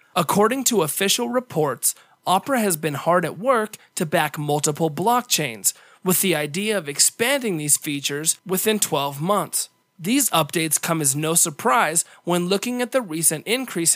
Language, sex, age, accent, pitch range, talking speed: English, male, 30-49, American, 150-210 Hz, 155 wpm